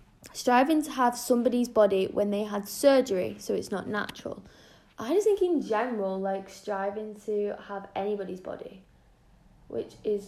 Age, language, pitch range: 10-29, English, 200-245 Hz